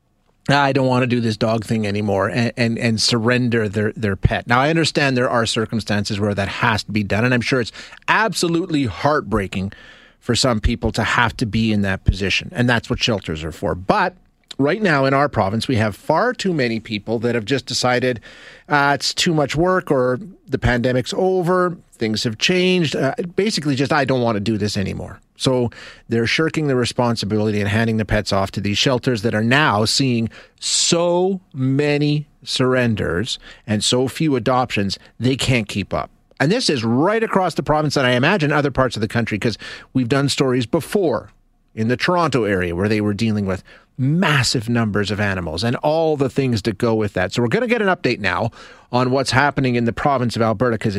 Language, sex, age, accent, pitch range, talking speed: English, male, 30-49, American, 110-140 Hz, 205 wpm